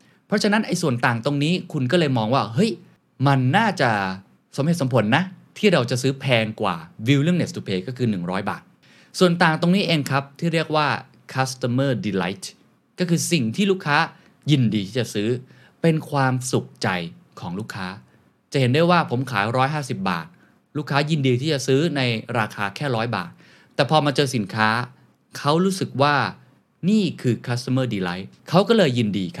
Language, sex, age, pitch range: Thai, male, 20-39, 105-150 Hz